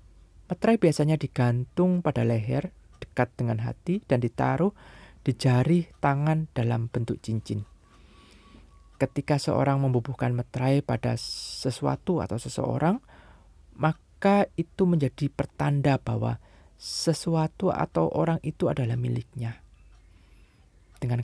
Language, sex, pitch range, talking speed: Indonesian, male, 110-145 Hz, 100 wpm